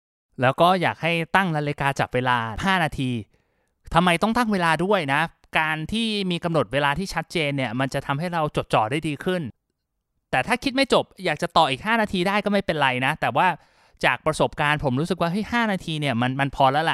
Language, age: Thai, 20-39